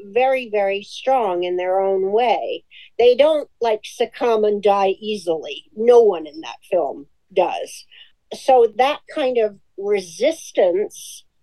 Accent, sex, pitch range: American, female, 195-300 Hz